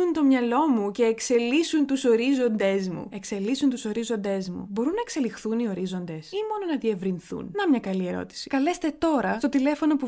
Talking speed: 180 wpm